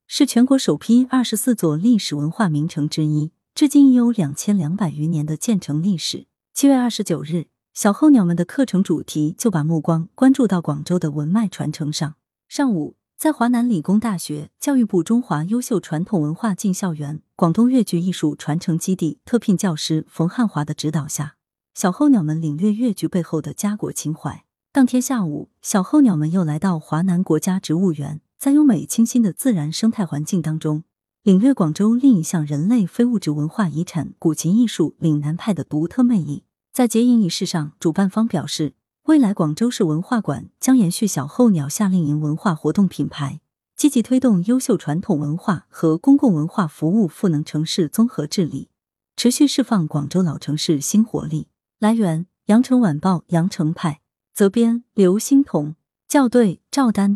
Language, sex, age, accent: Chinese, female, 30-49, native